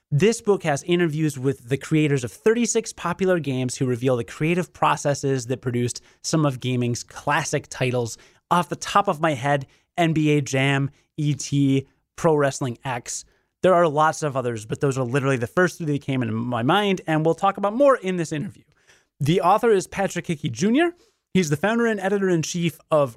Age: 30-49